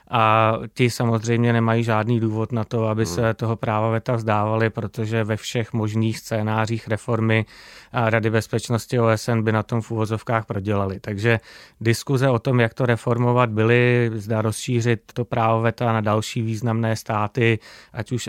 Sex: male